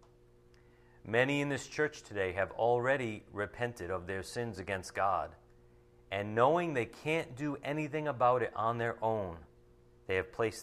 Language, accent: English, American